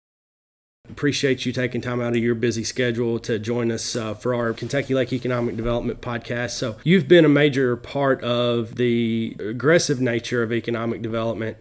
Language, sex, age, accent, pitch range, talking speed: English, male, 30-49, American, 115-130 Hz, 170 wpm